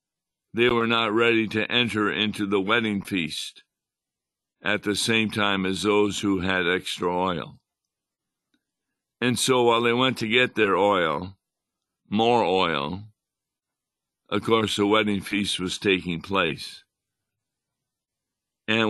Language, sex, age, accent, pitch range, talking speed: English, male, 60-79, American, 100-115 Hz, 125 wpm